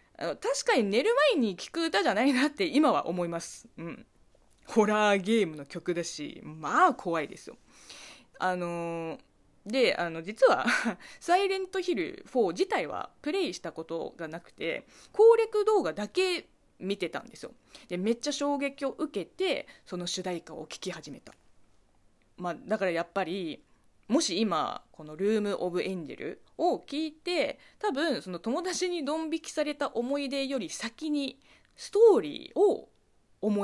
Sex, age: female, 20-39